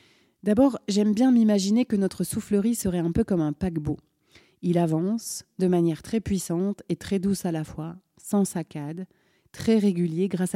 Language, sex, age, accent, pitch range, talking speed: French, female, 40-59, French, 170-210 Hz, 170 wpm